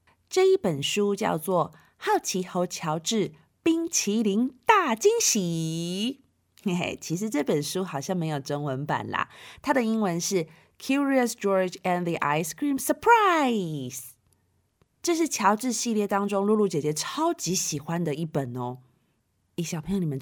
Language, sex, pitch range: Chinese, female, 155-235 Hz